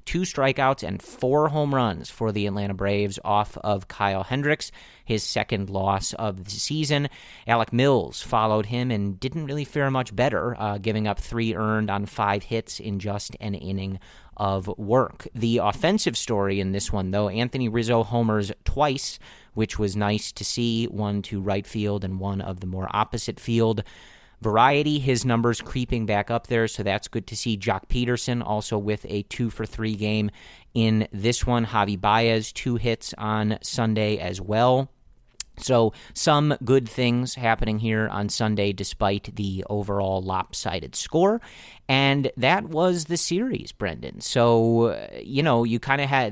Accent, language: American, English